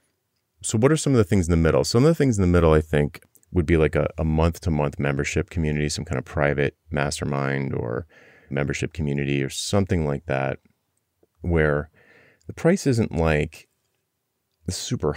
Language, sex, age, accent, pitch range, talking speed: English, male, 30-49, American, 70-90 Hz, 185 wpm